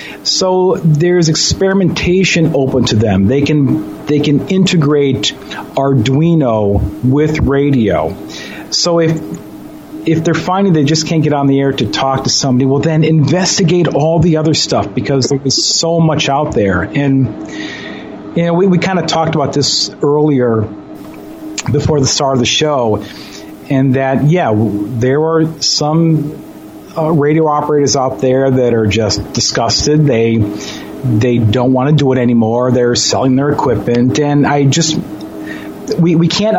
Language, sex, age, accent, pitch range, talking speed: English, male, 40-59, American, 130-165 Hz, 155 wpm